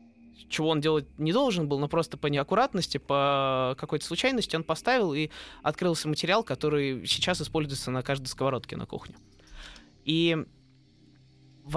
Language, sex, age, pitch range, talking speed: Russian, male, 20-39, 135-165 Hz, 145 wpm